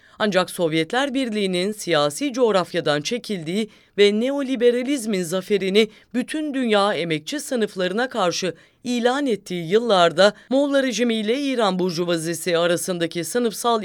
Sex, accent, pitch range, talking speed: female, Turkish, 170-240 Hz, 100 wpm